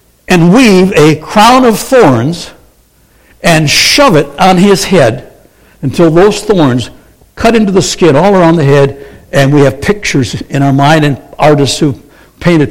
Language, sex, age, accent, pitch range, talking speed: English, male, 70-89, American, 140-185 Hz, 160 wpm